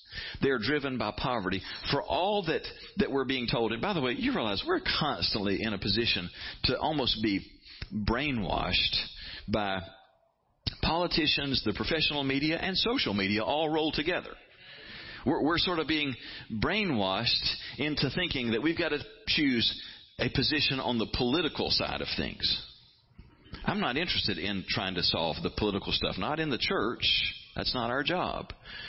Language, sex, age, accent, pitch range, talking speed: English, male, 40-59, American, 115-170 Hz, 160 wpm